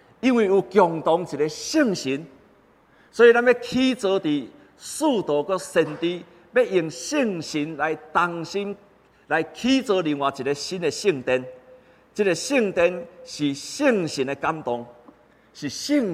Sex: male